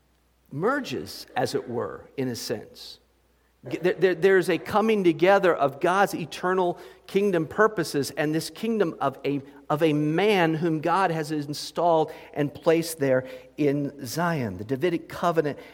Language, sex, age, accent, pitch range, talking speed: English, male, 50-69, American, 135-165 Hz, 135 wpm